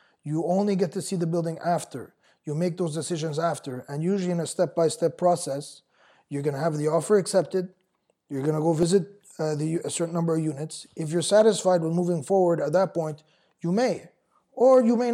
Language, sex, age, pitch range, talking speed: English, male, 20-39, 155-185 Hz, 200 wpm